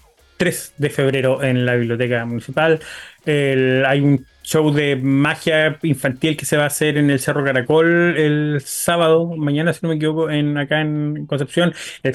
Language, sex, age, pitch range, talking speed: Spanish, male, 30-49, 130-160 Hz, 165 wpm